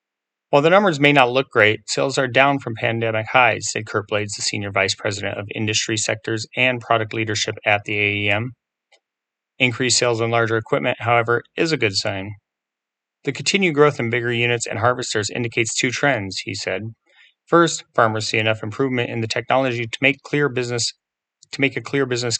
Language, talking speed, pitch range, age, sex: English, 175 wpm, 110-135 Hz, 30-49, male